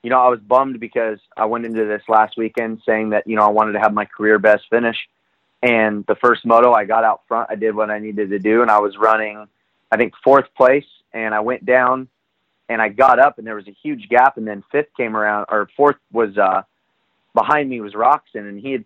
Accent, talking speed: American, 245 wpm